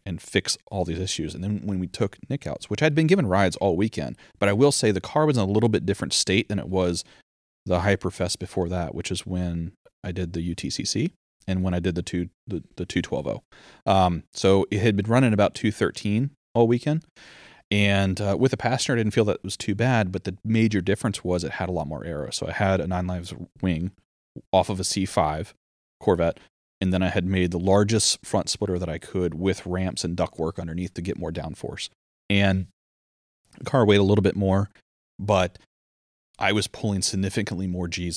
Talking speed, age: 220 wpm, 30-49